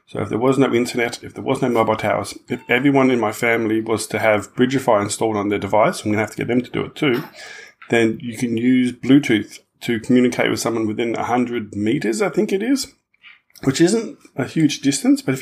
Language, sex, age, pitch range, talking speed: English, male, 30-49, 110-130 Hz, 230 wpm